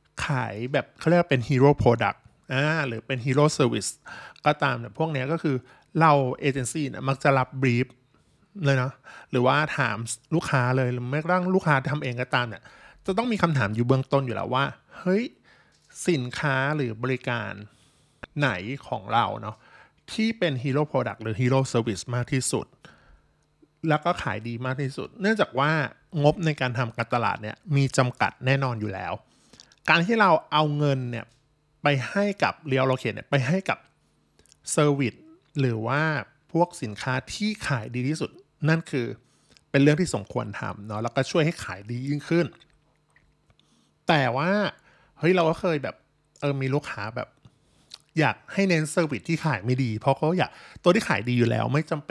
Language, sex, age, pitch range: Thai, male, 20-39, 125-155 Hz